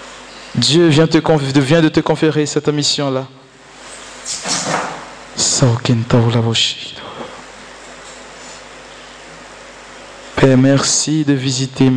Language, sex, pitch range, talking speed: French, male, 135-165 Hz, 70 wpm